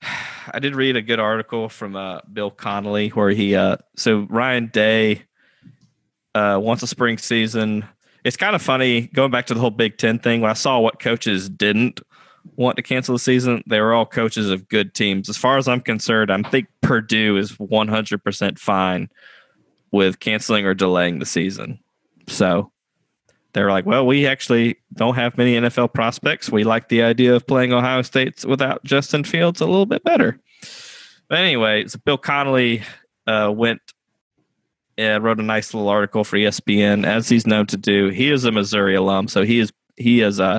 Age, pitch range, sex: 20-39, 105-120 Hz, male